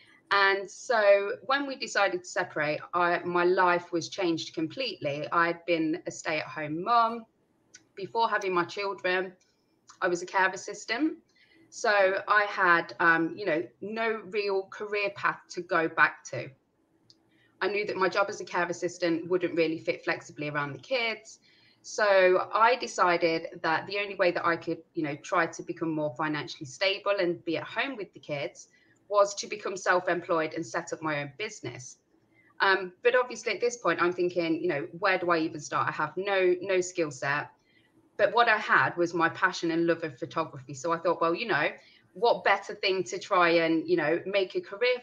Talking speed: 190 wpm